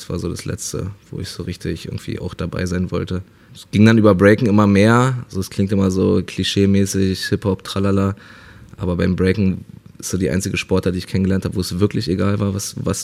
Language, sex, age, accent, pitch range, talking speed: German, male, 20-39, German, 95-110 Hz, 225 wpm